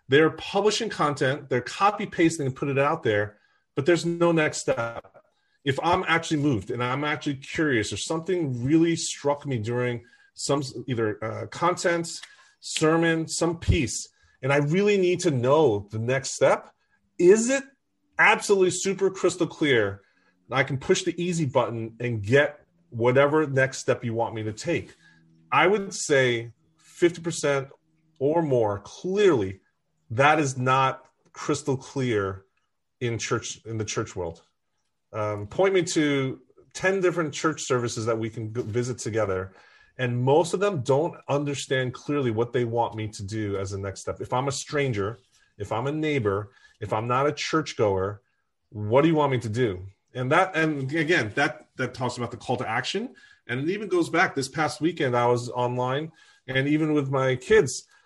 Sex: male